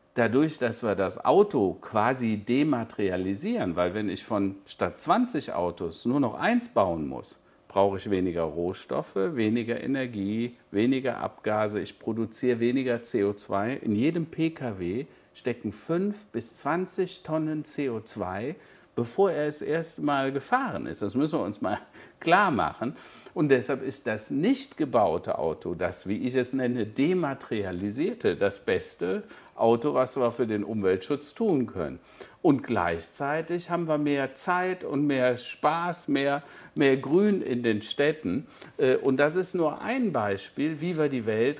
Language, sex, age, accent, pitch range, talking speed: German, male, 50-69, German, 105-150 Hz, 145 wpm